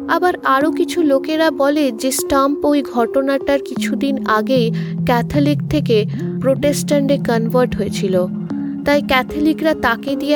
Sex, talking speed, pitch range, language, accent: female, 115 wpm, 200-290 Hz, Bengali, native